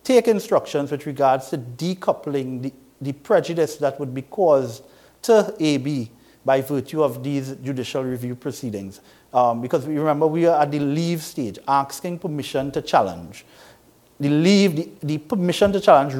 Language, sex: English, male